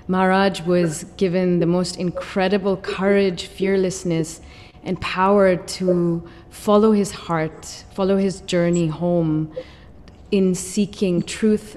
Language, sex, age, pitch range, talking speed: English, female, 30-49, 170-195 Hz, 105 wpm